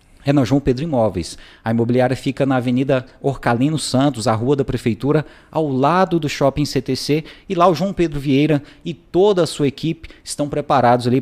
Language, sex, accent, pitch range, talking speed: Portuguese, male, Brazilian, 125-155 Hz, 185 wpm